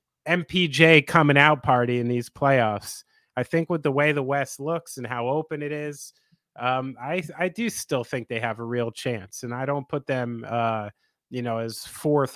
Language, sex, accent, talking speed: English, male, American, 200 wpm